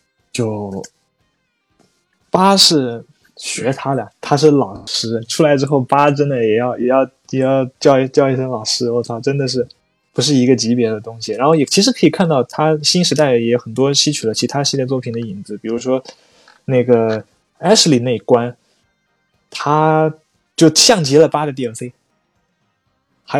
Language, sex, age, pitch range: Chinese, male, 20-39, 120-145 Hz